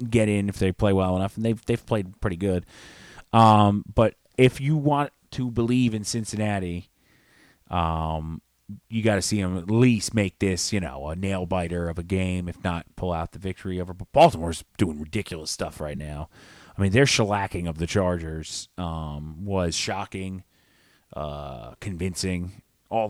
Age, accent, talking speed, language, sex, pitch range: 30-49, American, 170 wpm, English, male, 85-110 Hz